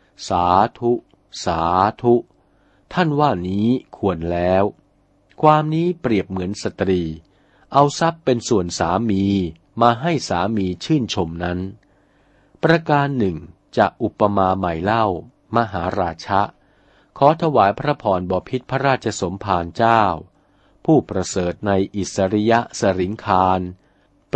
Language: Thai